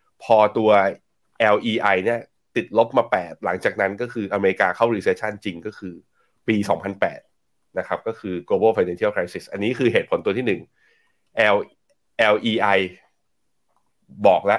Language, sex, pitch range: Thai, male, 100-120 Hz